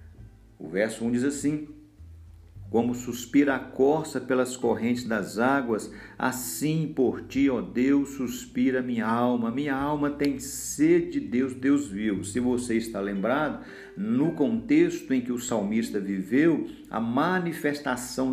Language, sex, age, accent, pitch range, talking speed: Portuguese, male, 50-69, Brazilian, 115-145 Hz, 140 wpm